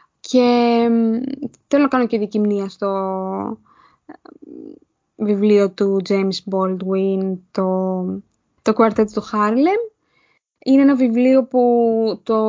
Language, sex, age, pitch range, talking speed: Greek, female, 20-39, 195-230 Hz, 95 wpm